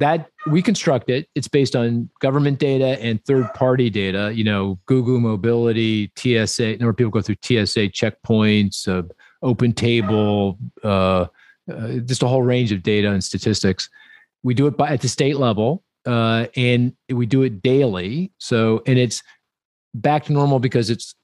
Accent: American